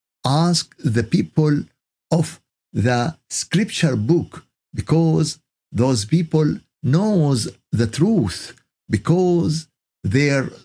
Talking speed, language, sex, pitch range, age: 85 wpm, Arabic, male, 115-165 Hz, 50-69